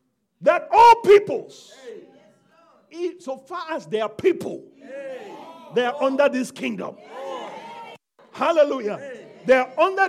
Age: 50-69